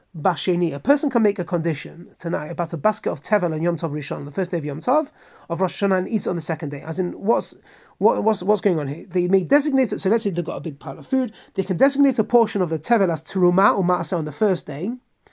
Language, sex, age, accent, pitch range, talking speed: English, male, 30-49, British, 180-235 Hz, 285 wpm